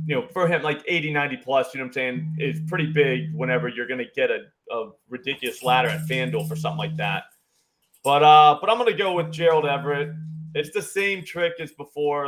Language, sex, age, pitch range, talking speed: English, male, 30-49, 140-170 Hz, 230 wpm